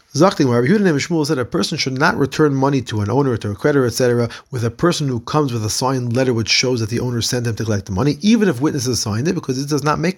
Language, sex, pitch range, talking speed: English, male, 120-150 Hz, 285 wpm